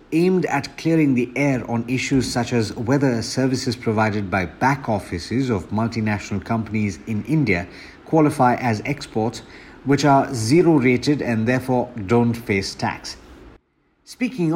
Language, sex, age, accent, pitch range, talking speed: English, male, 60-79, Indian, 110-135 Hz, 135 wpm